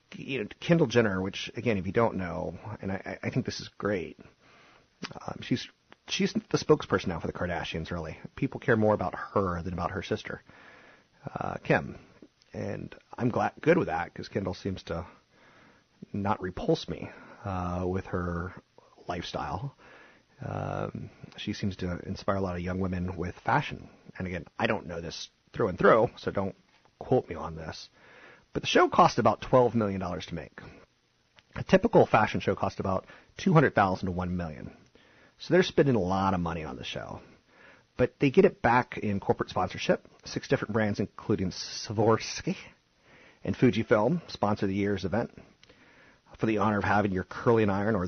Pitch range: 90-115 Hz